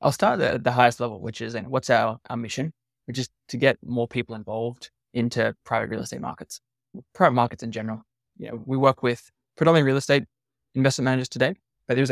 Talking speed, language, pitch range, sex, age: 210 wpm, English, 115-130 Hz, male, 20-39